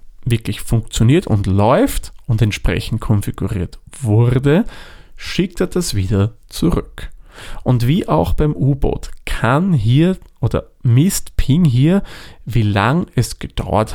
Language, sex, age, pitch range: German, male, 40-59, 100-135 Hz